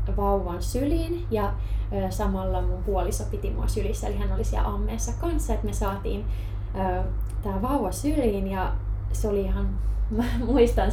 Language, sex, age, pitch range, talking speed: Finnish, female, 20-39, 100-115 Hz, 160 wpm